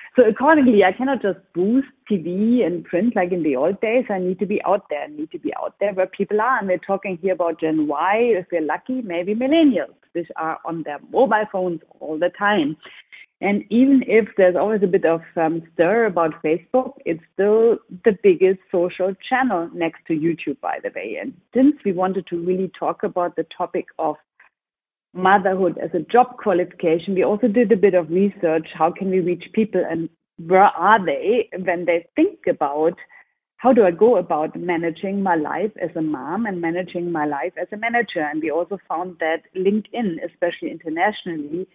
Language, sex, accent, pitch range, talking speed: English, female, German, 170-230 Hz, 200 wpm